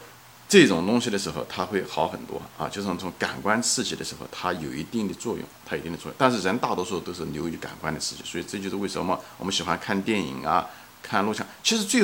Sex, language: male, Chinese